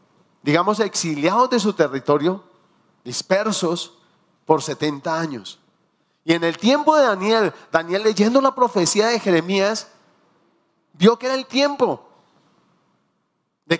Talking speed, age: 115 wpm, 40-59